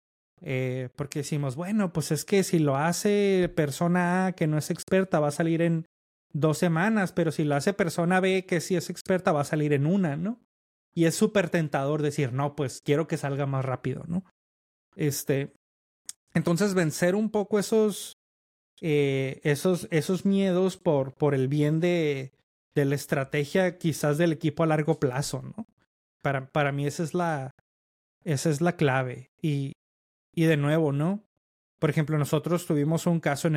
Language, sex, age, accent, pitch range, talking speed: Spanish, male, 30-49, Mexican, 135-170 Hz, 175 wpm